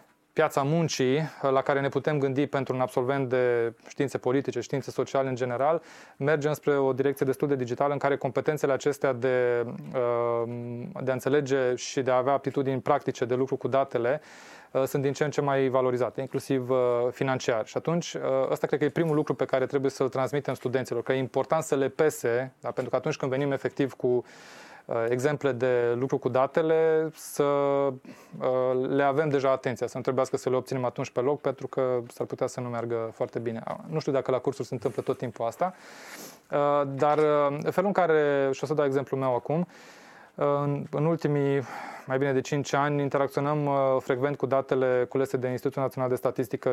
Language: Romanian